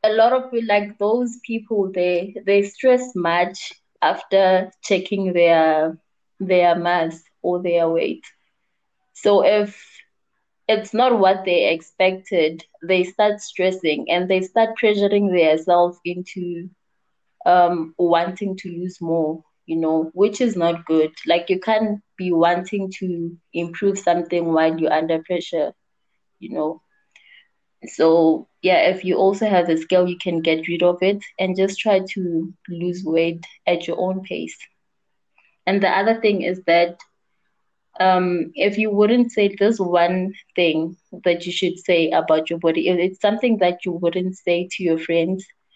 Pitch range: 170-200 Hz